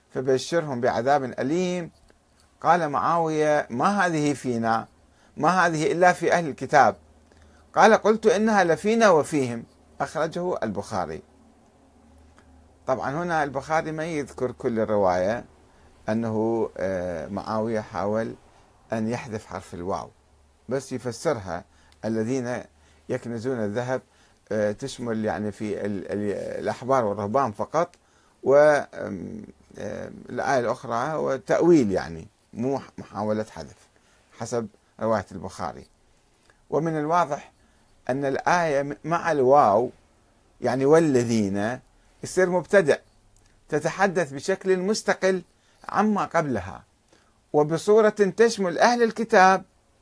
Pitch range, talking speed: 105-165 Hz, 90 wpm